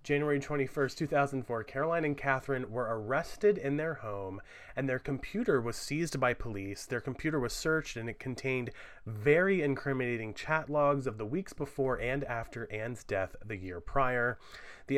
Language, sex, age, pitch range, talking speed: English, male, 30-49, 115-155 Hz, 165 wpm